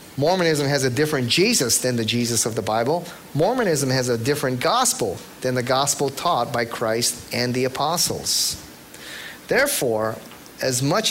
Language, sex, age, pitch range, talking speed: English, male, 30-49, 125-180 Hz, 150 wpm